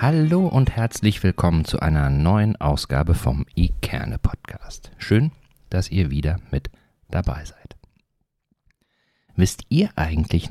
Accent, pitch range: German, 75-95 Hz